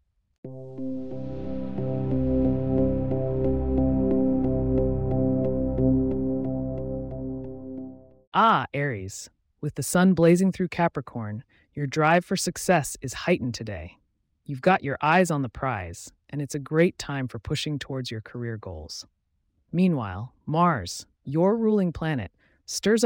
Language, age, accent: English, 30-49, American